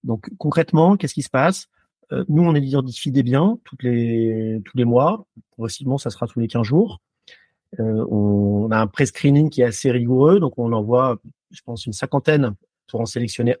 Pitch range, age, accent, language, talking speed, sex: 120-160 Hz, 40-59, French, French, 185 wpm, male